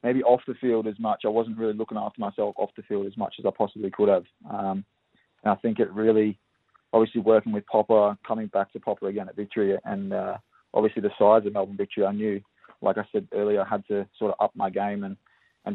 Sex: male